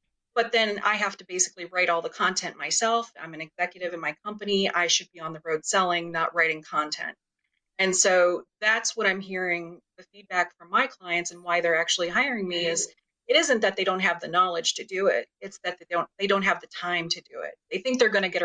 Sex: female